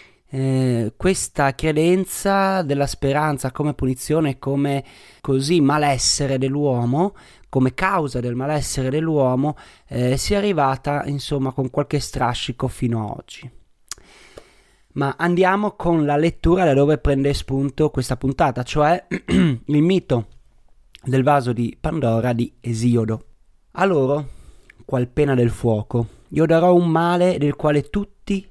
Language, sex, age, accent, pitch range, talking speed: Italian, male, 30-49, native, 130-160 Hz, 125 wpm